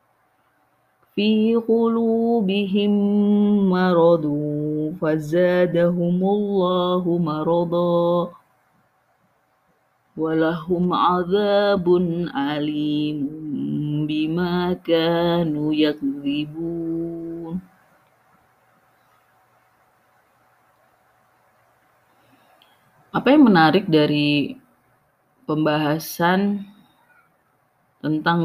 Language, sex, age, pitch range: Indonesian, female, 30-49, 150-195 Hz